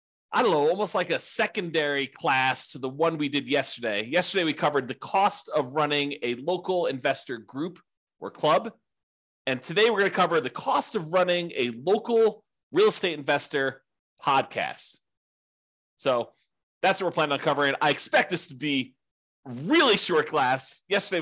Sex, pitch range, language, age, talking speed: male, 130-185 Hz, English, 30-49, 165 wpm